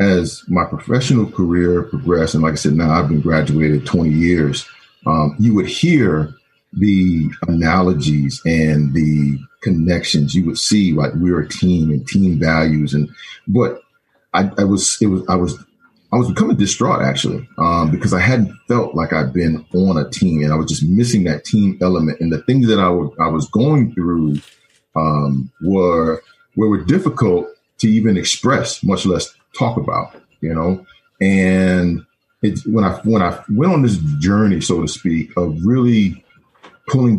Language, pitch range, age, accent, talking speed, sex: English, 80-105 Hz, 40-59, American, 170 wpm, male